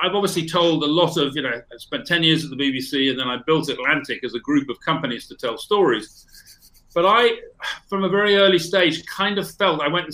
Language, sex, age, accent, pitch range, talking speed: English, male, 40-59, British, 140-180 Hz, 245 wpm